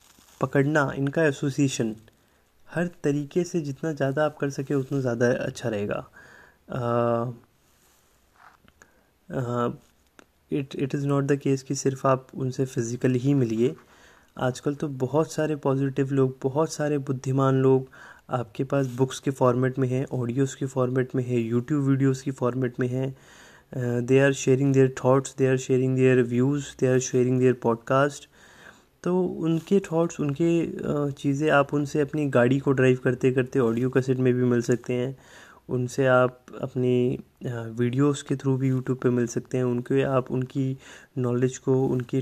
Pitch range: 125-140 Hz